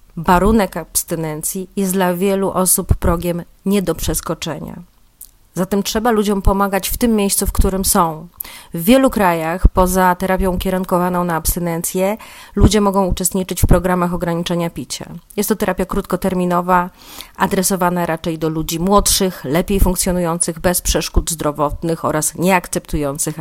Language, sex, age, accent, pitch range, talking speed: Polish, female, 30-49, native, 170-195 Hz, 130 wpm